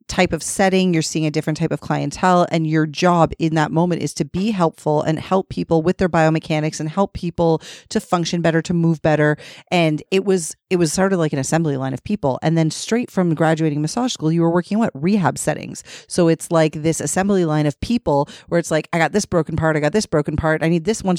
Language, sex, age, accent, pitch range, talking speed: English, female, 30-49, American, 155-180 Hz, 245 wpm